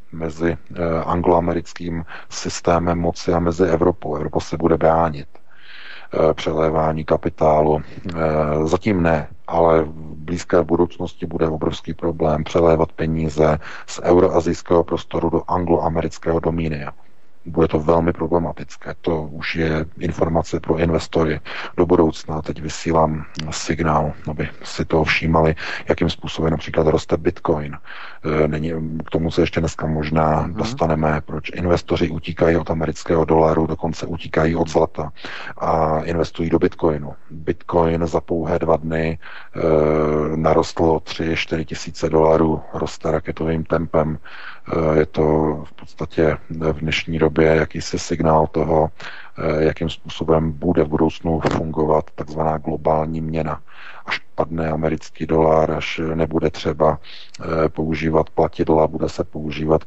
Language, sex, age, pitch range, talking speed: Czech, male, 40-59, 80-85 Hz, 120 wpm